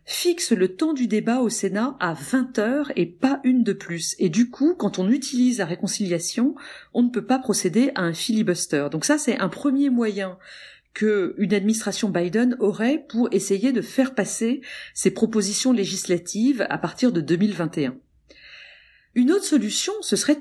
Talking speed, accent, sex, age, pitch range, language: 170 wpm, French, female, 40-59, 200-270 Hz, French